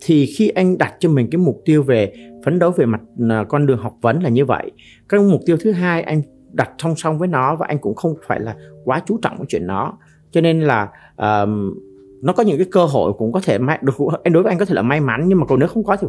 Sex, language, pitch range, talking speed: male, Vietnamese, 110-165 Hz, 275 wpm